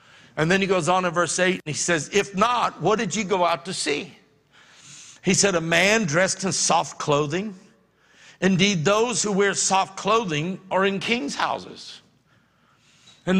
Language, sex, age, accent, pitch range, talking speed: English, male, 60-79, American, 160-195 Hz, 175 wpm